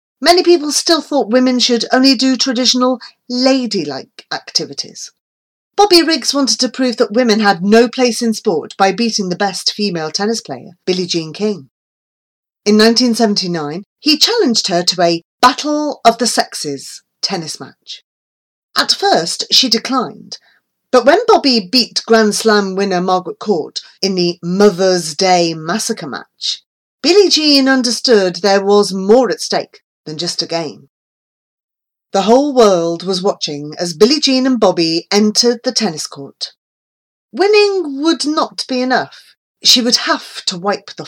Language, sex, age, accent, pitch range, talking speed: English, female, 40-59, British, 180-255 Hz, 150 wpm